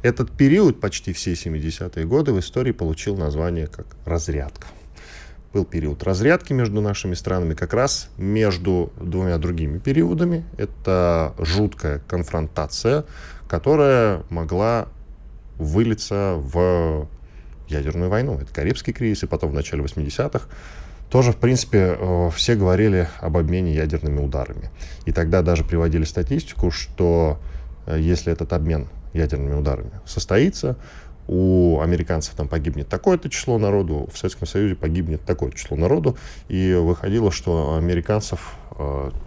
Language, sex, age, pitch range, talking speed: Russian, male, 10-29, 80-105 Hz, 125 wpm